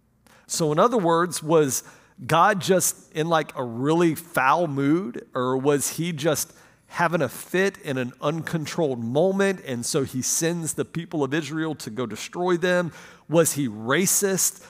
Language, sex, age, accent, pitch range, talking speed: English, male, 50-69, American, 125-160 Hz, 160 wpm